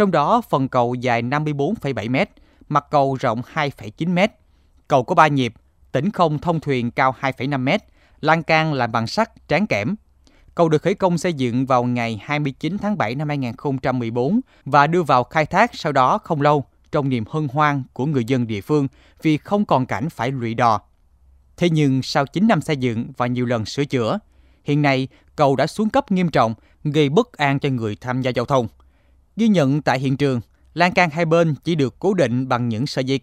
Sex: male